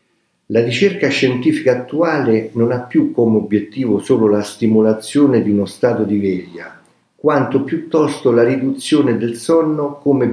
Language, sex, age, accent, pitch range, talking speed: Italian, male, 50-69, native, 110-140 Hz, 140 wpm